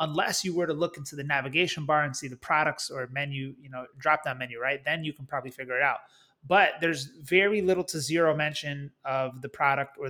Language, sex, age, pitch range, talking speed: English, male, 30-49, 140-180 Hz, 230 wpm